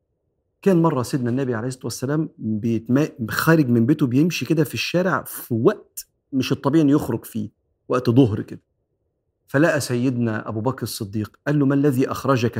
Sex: male